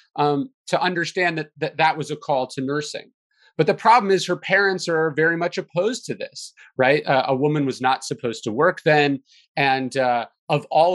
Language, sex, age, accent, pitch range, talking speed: English, male, 30-49, American, 130-180 Hz, 205 wpm